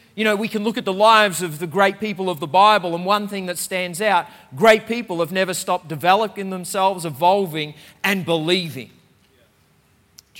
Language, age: English, 40-59